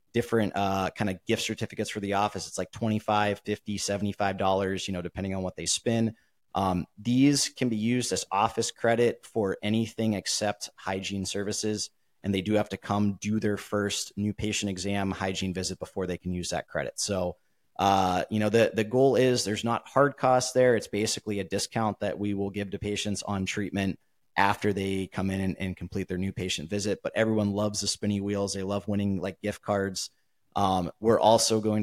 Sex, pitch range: male, 95-110 Hz